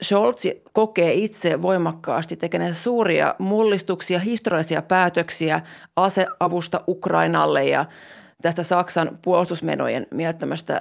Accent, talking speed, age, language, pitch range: native, 90 wpm, 30-49, Finnish, 165-195 Hz